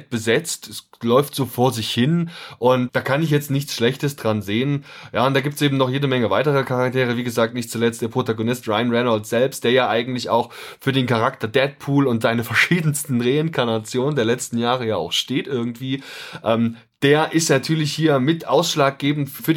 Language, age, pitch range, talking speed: German, 20-39, 115-140 Hz, 195 wpm